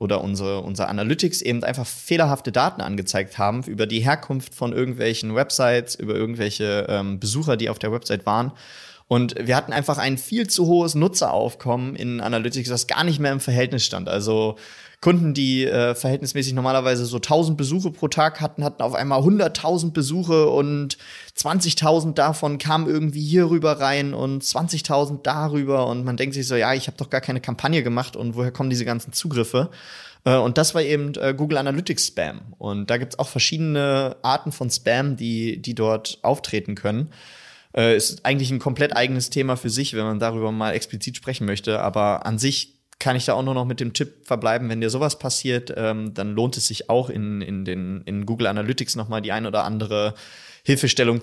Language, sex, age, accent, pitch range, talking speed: German, male, 30-49, German, 110-145 Hz, 190 wpm